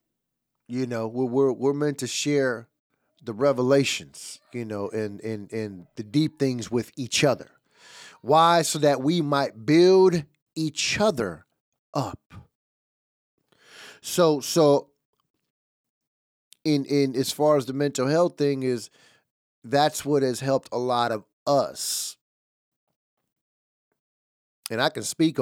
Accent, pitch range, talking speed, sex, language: American, 115-160 Hz, 125 wpm, male, English